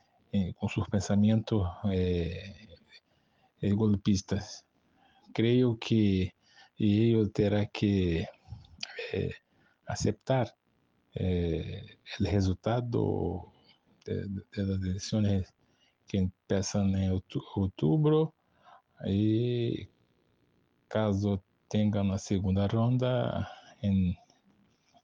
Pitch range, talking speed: 95-110 Hz, 70 wpm